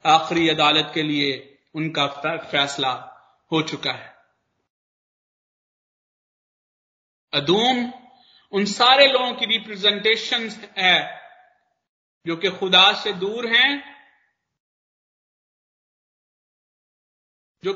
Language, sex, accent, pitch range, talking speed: Hindi, male, native, 190-250 Hz, 80 wpm